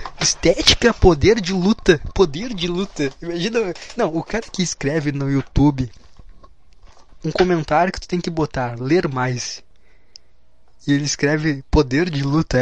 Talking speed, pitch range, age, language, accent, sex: 145 wpm, 115-170 Hz, 20-39, Portuguese, Brazilian, male